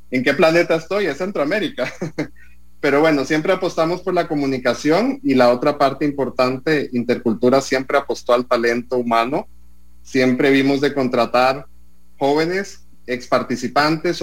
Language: English